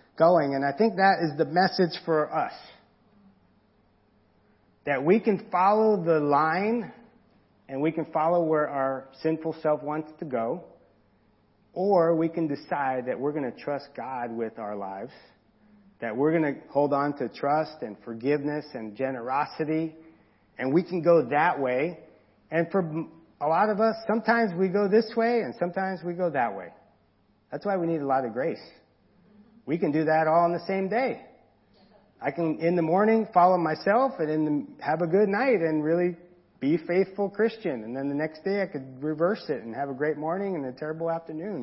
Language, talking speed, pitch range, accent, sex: English, 185 wpm, 135-190 Hz, American, male